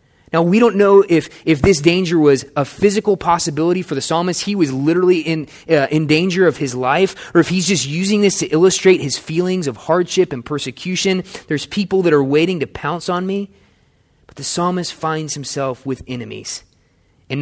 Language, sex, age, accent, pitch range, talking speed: English, male, 20-39, American, 135-180 Hz, 195 wpm